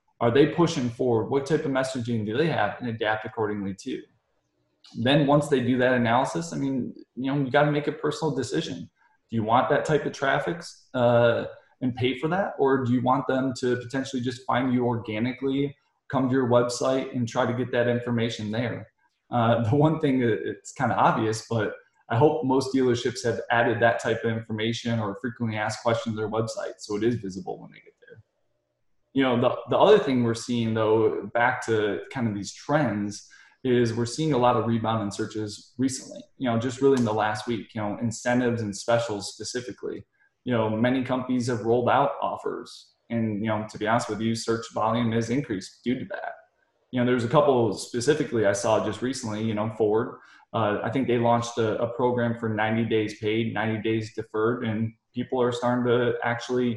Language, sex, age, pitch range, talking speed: English, male, 20-39, 110-130 Hz, 205 wpm